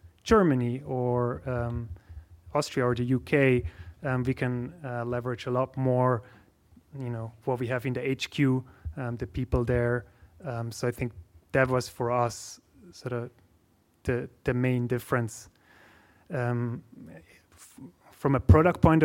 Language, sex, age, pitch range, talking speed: English, male, 30-49, 115-130 Hz, 150 wpm